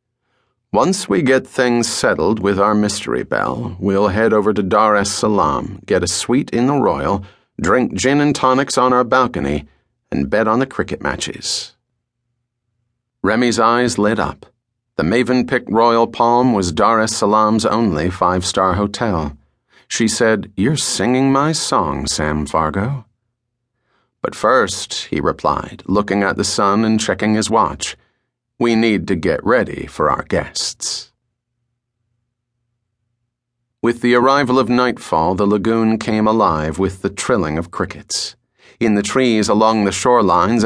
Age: 40-59